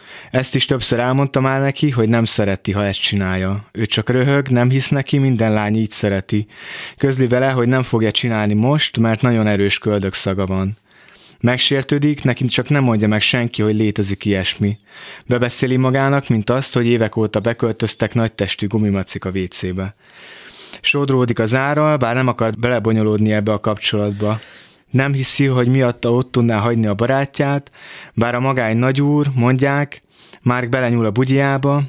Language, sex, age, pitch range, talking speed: Hungarian, male, 20-39, 105-135 Hz, 160 wpm